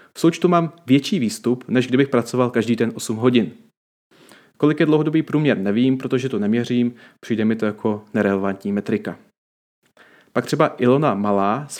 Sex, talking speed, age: male, 160 wpm, 30-49